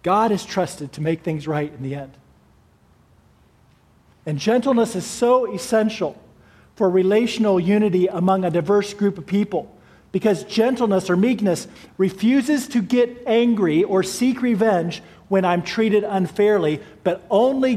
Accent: American